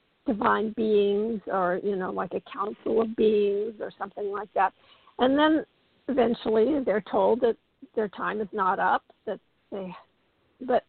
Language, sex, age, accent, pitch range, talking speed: English, female, 50-69, American, 205-245 Hz, 155 wpm